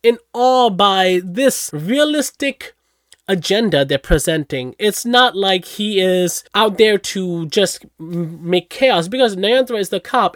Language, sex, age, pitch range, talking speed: English, male, 20-39, 180-235 Hz, 140 wpm